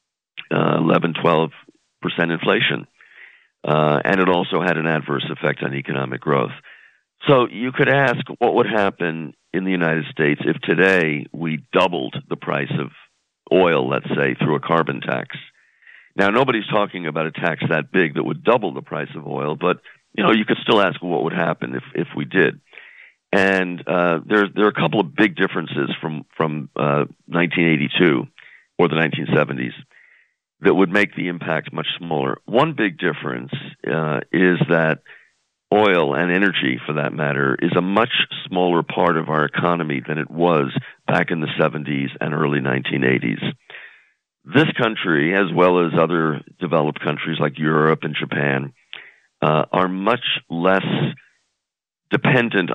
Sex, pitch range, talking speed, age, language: male, 75-90 Hz, 160 wpm, 50-69, English